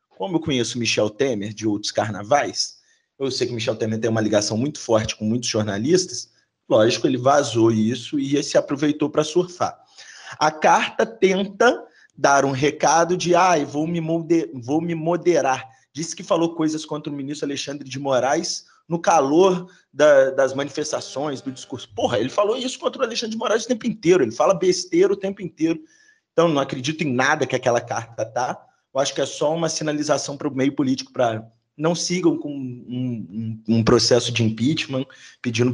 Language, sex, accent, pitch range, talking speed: Portuguese, male, Brazilian, 120-165 Hz, 180 wpm